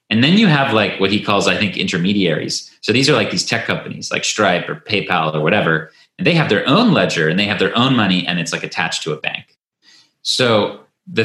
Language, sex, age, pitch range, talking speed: English, male, 30-49, 90-120 Hz, 240 wpm